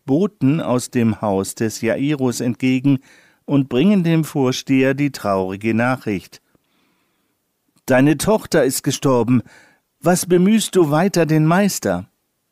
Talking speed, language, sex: 115 wpm, German, male